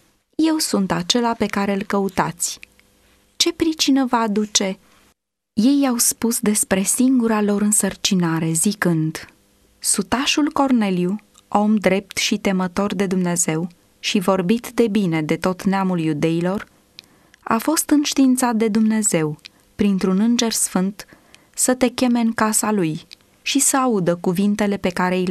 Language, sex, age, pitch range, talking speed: Romanian, female, 20-39, 180-245 Hz, 135 wpm